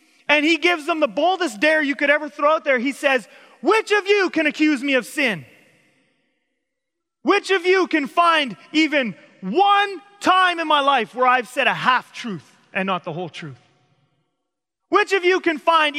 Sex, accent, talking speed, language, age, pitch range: male, American, 190 wpm, English, 30-49, 245-335 Hz